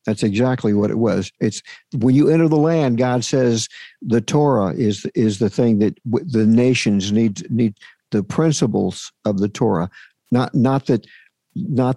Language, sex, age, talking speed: English, male, 50-69, 170 wpm